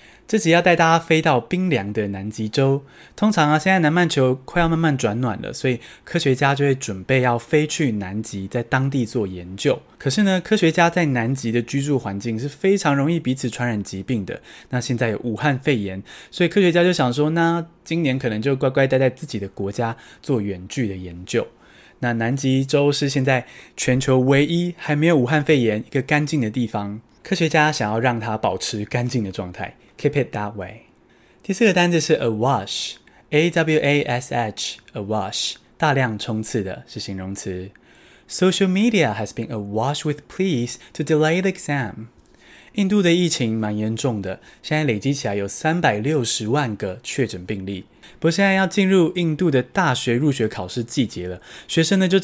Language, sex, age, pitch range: Chinese, male, 20-39, 110-160 Hz